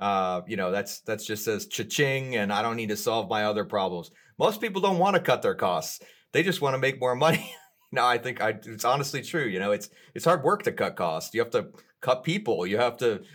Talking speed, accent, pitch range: 250 wpm, American, 105-140 Hz